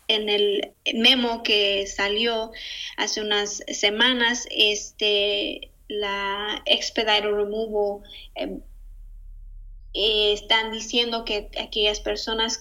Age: 20-39